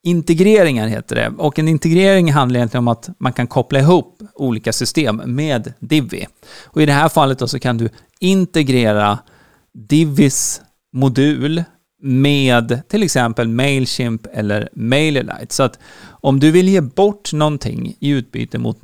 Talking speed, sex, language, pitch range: 150 wpm, male, Swedish, 120-160 Hz